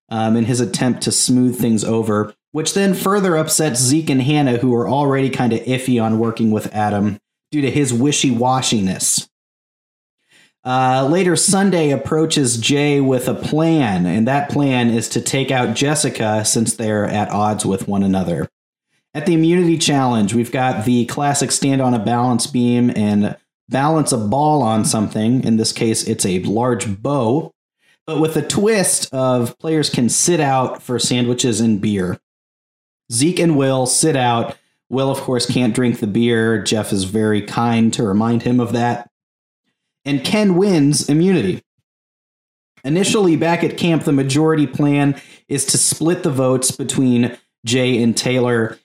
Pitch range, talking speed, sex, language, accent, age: 115-145 Hz, 160 wpm, male, English, American, 30-49